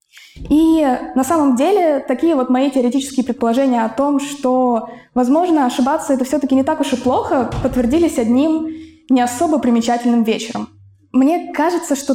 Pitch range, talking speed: 240-285 Hz, 150 wpm